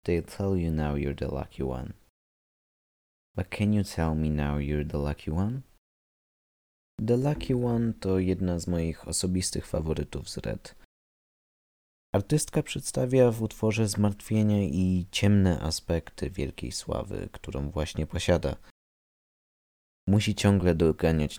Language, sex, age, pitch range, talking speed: Polish, male, 20-39, 75-100 Hz, 125 wpm